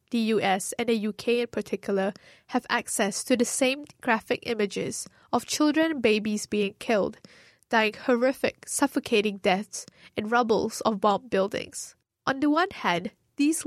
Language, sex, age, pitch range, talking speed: Arabic, female, 10-29, 215-265 Hz, 150 wpm